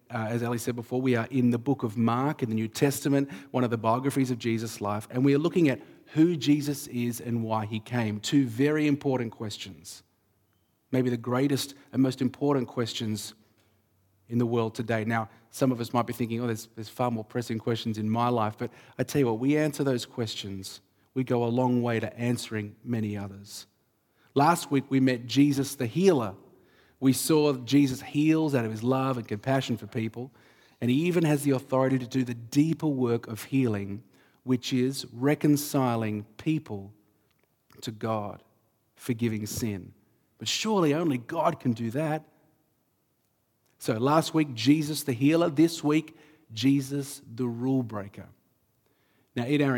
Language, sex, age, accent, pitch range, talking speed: English, male, 30-49, Australian, 115-140 Hz, 180 wpm